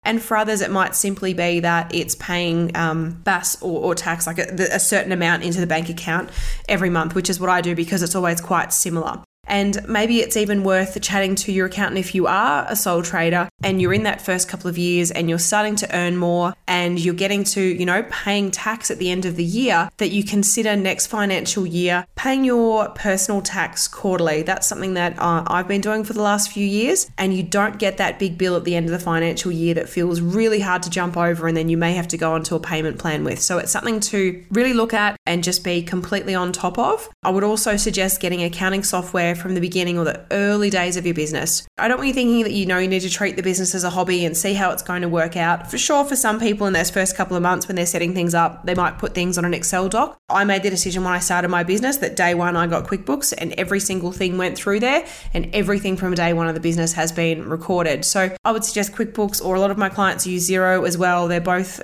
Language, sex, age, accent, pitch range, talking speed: English, female, 20-39, Australian, 175-200 Hz, 255 wpm